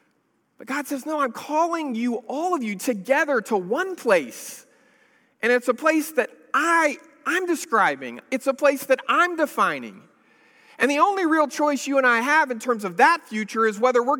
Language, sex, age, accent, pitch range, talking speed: English, male, 40-59, American, 195-260 Hz, 185 wpm